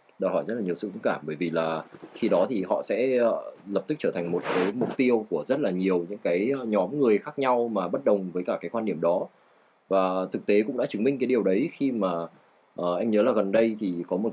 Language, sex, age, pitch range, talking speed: Vietnamese, male, 20-39, 90-120 Hz, 265 wpm